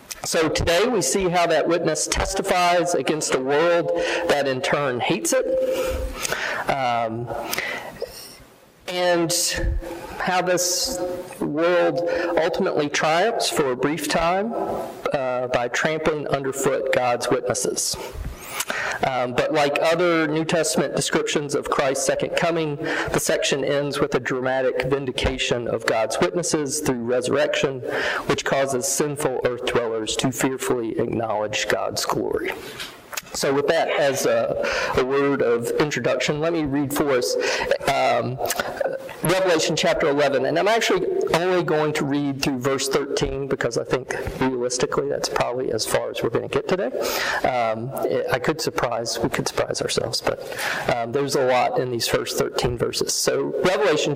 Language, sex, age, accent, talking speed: English, male, 40-59, American, 140 wpm